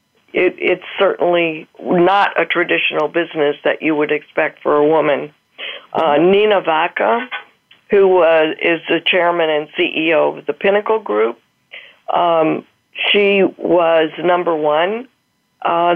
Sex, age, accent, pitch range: female, 50-69, American, 160-195 Hz